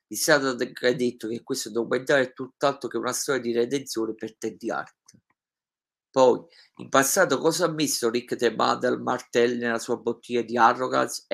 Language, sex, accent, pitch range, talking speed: Italian, male, native, 115-130 Hz, 170 wpm